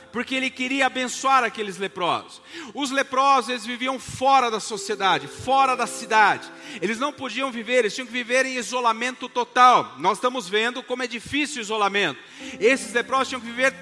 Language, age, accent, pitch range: Portuguese, 40-59, Brazilian, 240-280 Hz